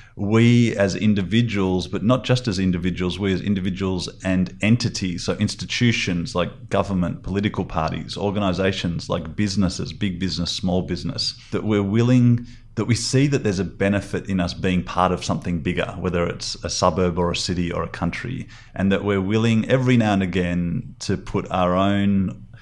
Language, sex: English, male